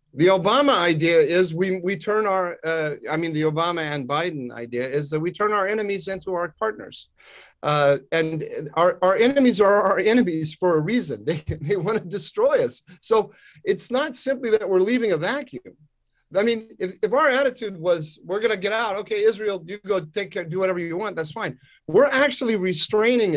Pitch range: 160-215 Hz